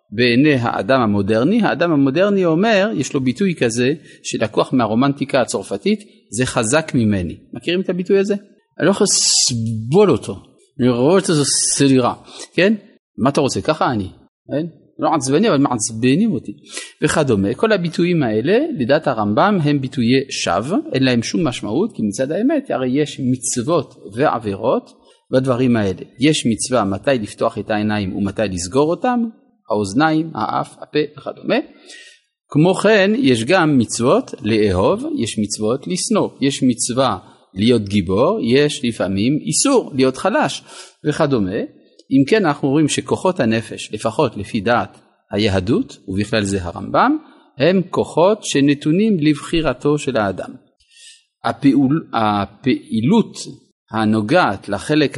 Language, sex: Hebrew, male